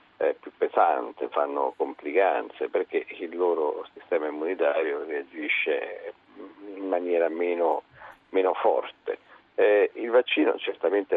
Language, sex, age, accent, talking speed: Italian, male, 50-69, native, 100 wpm